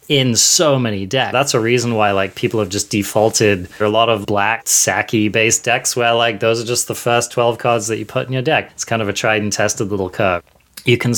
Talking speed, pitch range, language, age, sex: 260 wpm, 105-120 Hz, English, 20-39, male